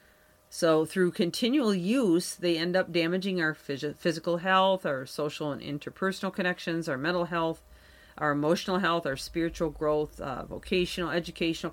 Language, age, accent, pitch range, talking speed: English, 40-59, American, 160-190 Hz, 150 wpm